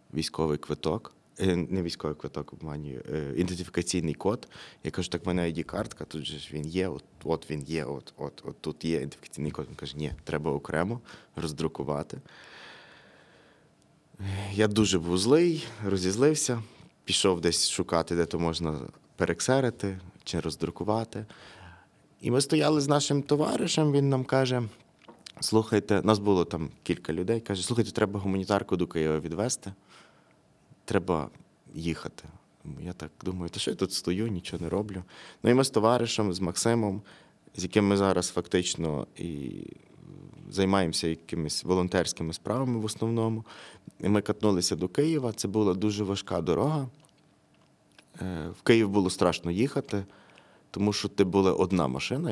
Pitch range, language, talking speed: 85-110 Hz, Ukrainian, 140 wpm